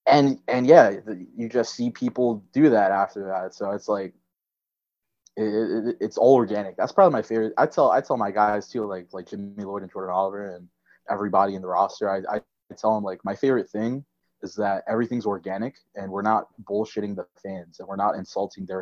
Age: 20-39